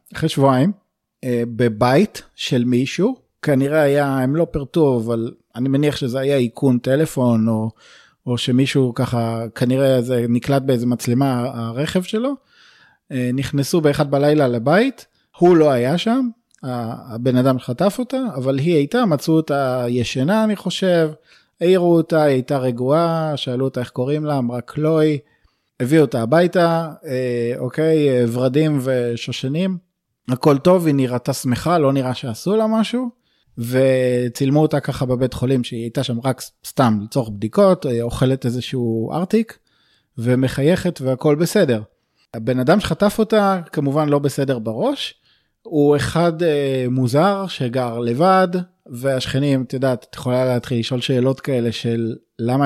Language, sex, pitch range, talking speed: Hebrew, male, 125-160 Hz, 135 wpm